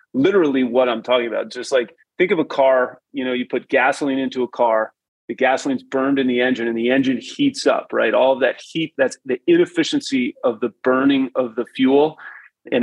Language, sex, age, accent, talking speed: English, male, 30-49, American, 200 wpm